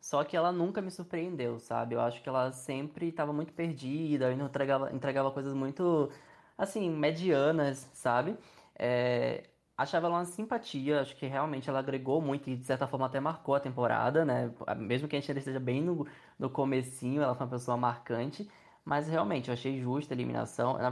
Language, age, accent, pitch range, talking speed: Portuguese, 20-39, Brazilian, 130-170 Hz, 185 wpm